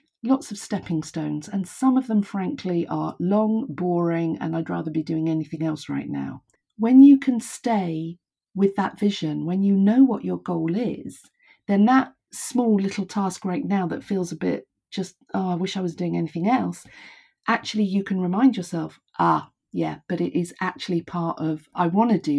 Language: English